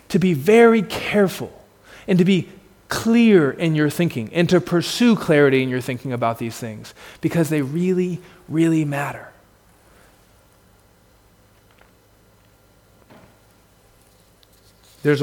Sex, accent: male, American